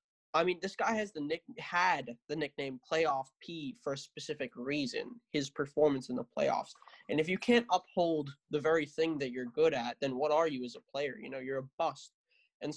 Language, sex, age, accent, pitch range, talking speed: English, male, 10-29, American, 135-170 Hz, 215 wpm